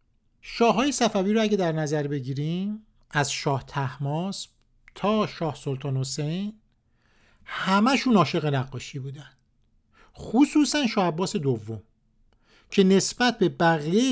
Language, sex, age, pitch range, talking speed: Persian, male, 50-69, 140-210 Hz, 110 wpm